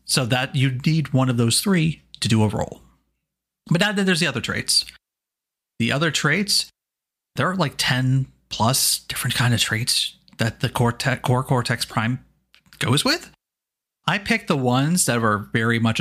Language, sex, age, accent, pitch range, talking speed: English, male, 30-49, American, 110-140 Hz, 180 wpm